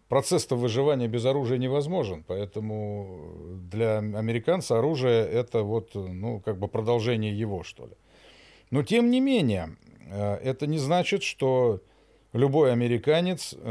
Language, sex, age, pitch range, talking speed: Russian, male, 50-69, 100-130 Hz, 125 wpm